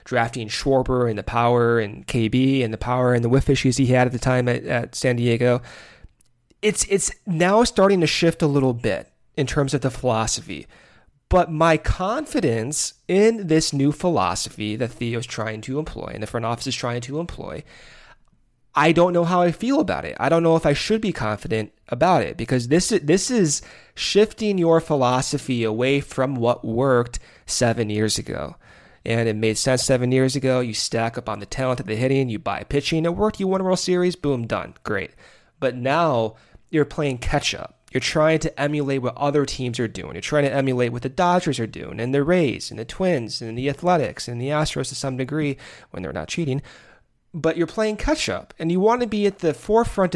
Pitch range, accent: 120-165 Hz, American